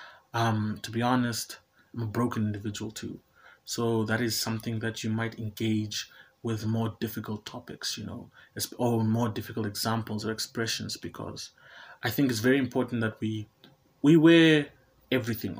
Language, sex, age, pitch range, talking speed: English, male, 20-39, 110-120 Hz, 155 wpm